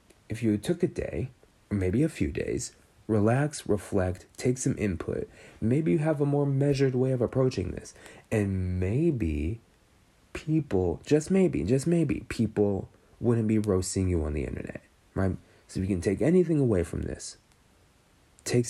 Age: 30-49